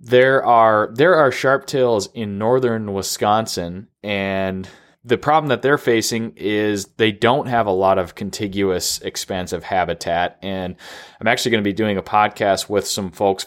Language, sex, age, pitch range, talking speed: English, male, 20-39, 95-115 Hz, 160 wpm